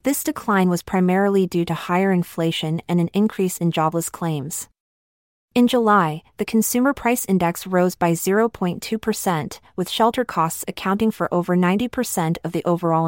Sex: female